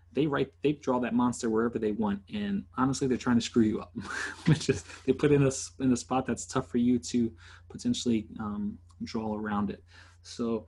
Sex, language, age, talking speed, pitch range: male, English, 20-39, 200 wpm, 90-125 Hz